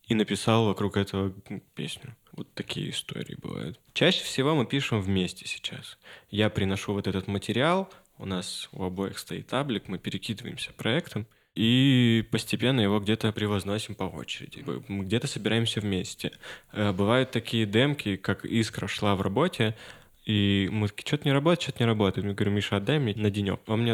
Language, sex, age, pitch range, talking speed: Russian, male, 20-39, 100-120 Hz, 165 wpm